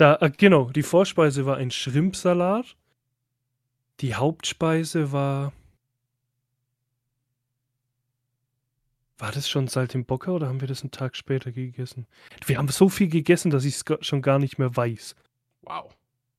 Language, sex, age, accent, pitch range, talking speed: German, male, 10-29, German, 125-145 Hz, 130 wpm